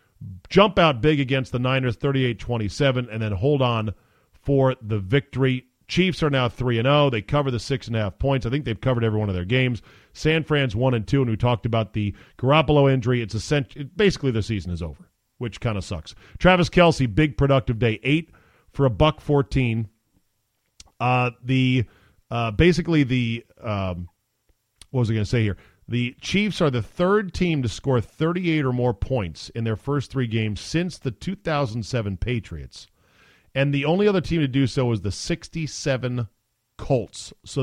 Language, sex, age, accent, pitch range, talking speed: English, male, 40-59, American, 110-145 Hz, 185 wpm